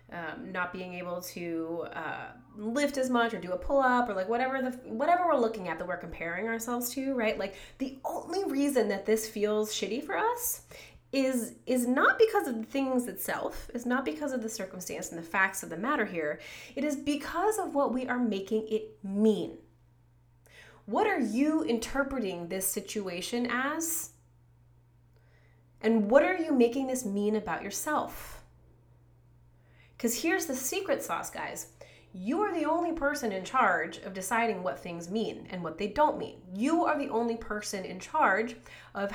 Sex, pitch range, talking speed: female, 185-255 Hz, 180 wpm